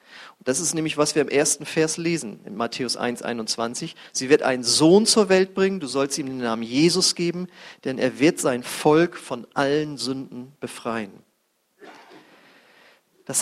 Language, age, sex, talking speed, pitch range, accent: German, 40-59, male, 160 wpm, 135-180 Hz, German